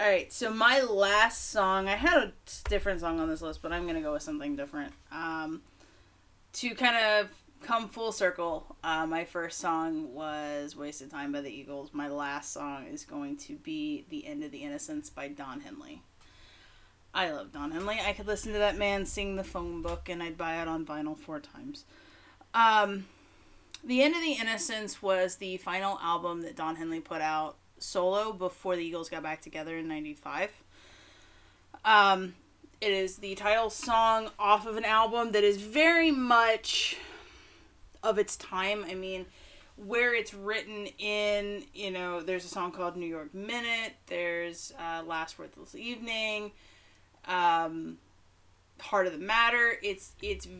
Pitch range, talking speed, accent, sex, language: 160-230 Hz, 170 wpm, American, female, English